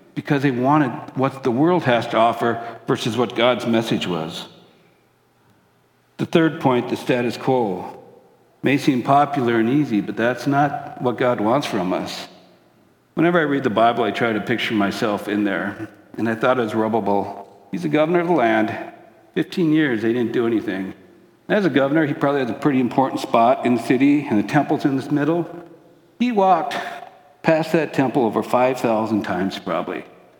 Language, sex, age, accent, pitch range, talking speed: English, male, 60-79, American, 115-160 Hz, 180 wpm